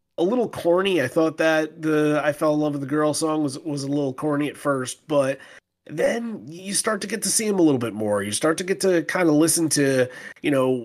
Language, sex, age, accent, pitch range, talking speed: English, male, 30-49, American, 115-145 Hz, 255 wpm